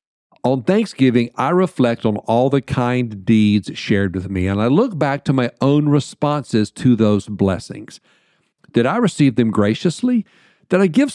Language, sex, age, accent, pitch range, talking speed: English, male, 50-69, American, 105-140 Hz, 165 wpm